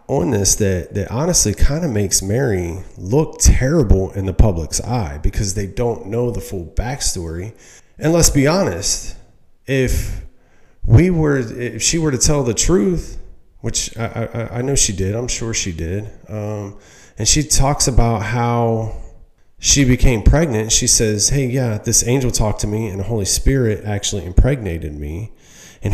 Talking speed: 170 wpm